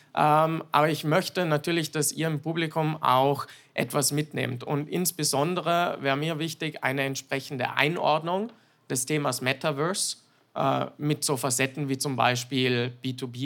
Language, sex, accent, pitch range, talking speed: German, male, German, 135-155 Hz, 140 wpm